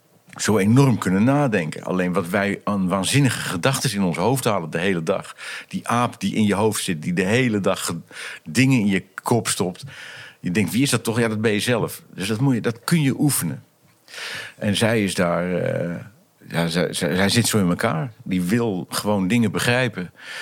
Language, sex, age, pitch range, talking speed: Dutch, male, 50-69, 95-120 Hz, 195 wpm